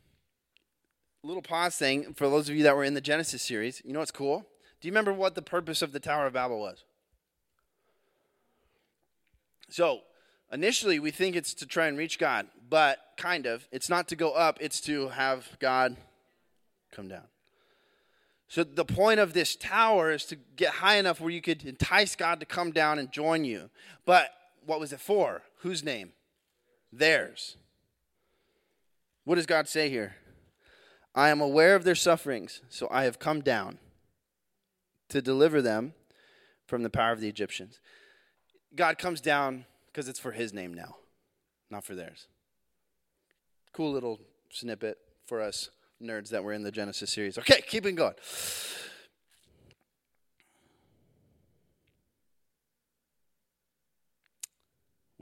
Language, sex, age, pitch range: English, male, 20-39, 130-180 Hz